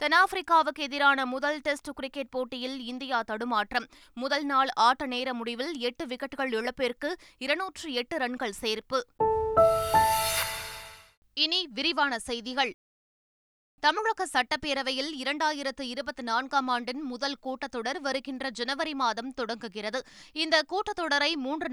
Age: 20-39